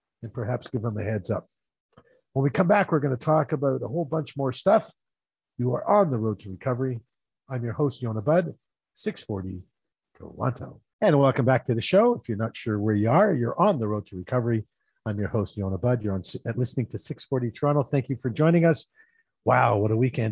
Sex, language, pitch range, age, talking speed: male, English, 110-135 Hz, 50-69, 225 wpm